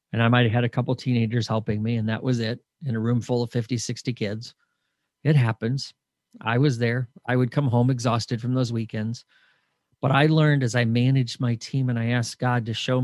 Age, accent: 40-59, American